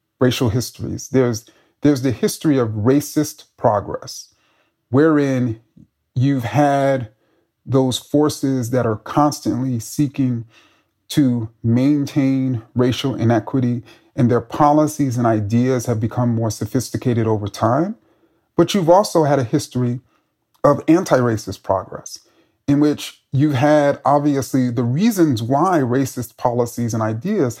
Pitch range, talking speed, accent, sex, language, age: 120-150 Hz, 115 wpm, American, male, English, 30-49